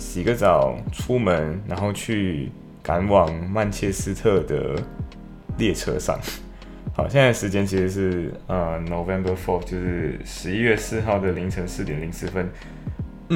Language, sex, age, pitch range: Chinese, male, 20-39, 90-105 Hz